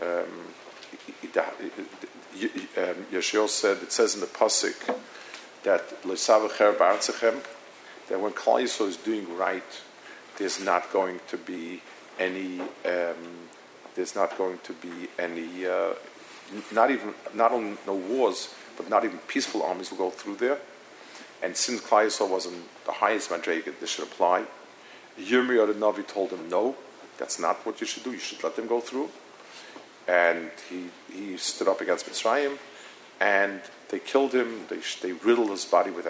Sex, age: male, 50-69